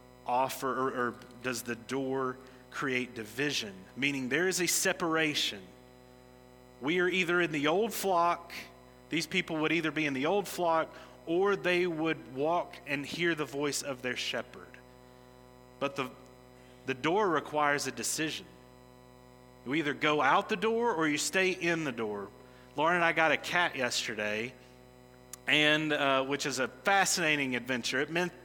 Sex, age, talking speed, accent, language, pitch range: male, 30-49, 160 wpm, American, English, 115-160 Hz